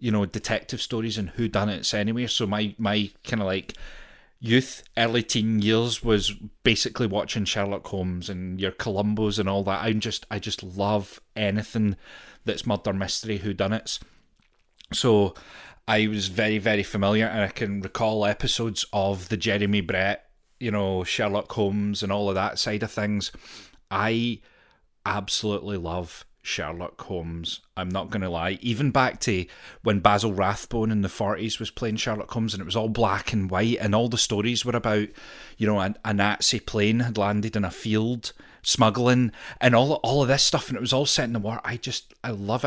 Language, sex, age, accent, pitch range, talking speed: English, male, 30-49, British, 100-115 Hz, 180 wpm